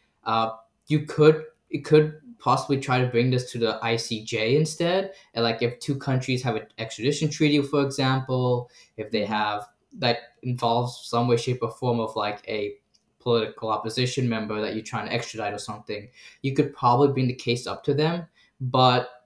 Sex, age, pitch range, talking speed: male, 10-29, 110-135 Hz, 180 wpm